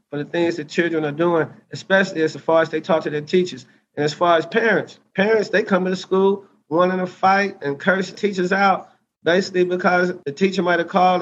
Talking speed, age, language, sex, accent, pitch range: 225 wpm, 30-49, English, male, American, 160-185 Hz